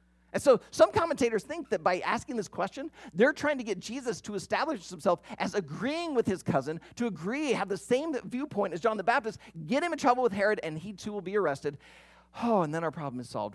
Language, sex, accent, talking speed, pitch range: English, male, American, 230 wpm, 135-225 Hz